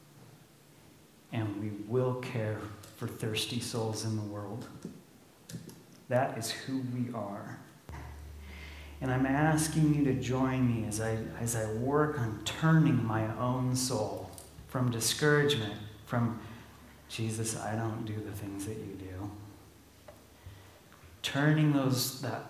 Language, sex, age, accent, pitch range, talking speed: English, male, 40-59, American, 110-150 Hz, 125 wpm